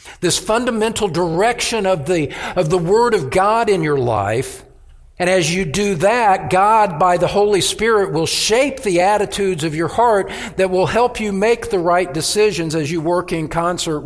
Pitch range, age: 125-185 Hz, 50-69